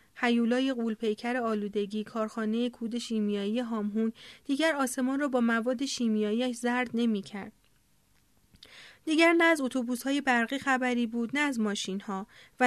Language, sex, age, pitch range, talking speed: Persian, female, 30-49, 215-265 Hz, 130 wpm